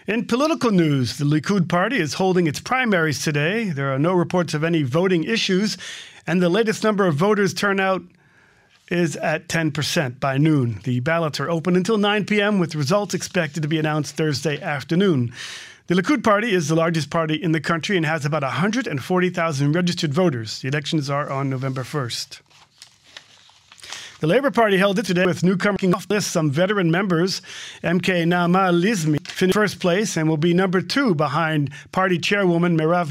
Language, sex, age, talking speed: English, male, 40-59, 170 wpm